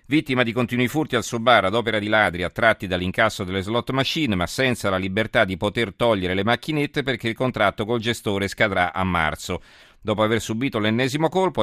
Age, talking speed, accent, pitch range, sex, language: 40-59, 195 wpm, native, 95-120 Hz, male, Italian